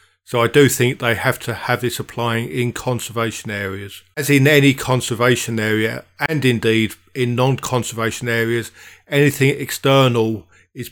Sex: male